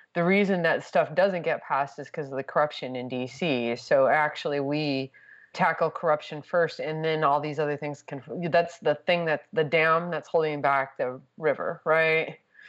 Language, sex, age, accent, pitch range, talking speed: English, female, 20-39, American, 140-165 Hz, 185 wpm